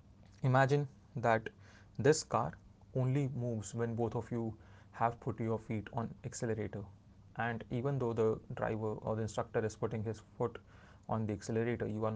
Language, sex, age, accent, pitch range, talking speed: Hindi, male, 30-49, native, 100-120 Hz, 165 wpm